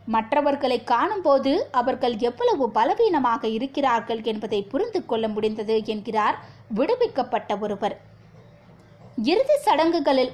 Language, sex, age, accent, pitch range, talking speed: Tamil, female, 20-39, native, 220-310 Hz, 80 wpm